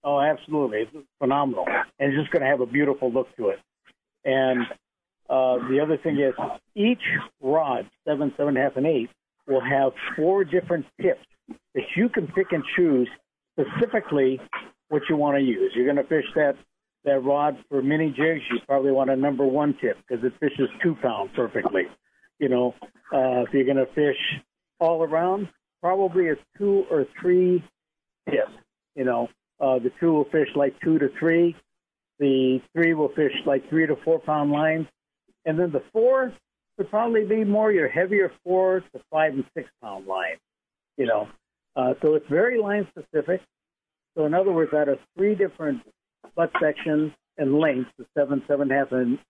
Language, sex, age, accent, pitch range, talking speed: English, male, 60-79, American, 140-175 Hz, 180 wpm